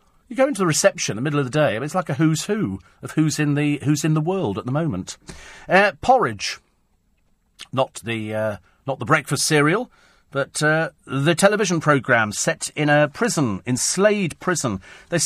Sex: male